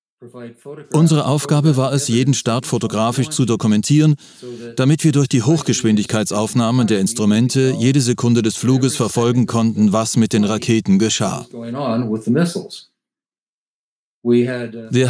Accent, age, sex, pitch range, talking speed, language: German, 40-59, male, 115-140 Hz, 110 wpm, German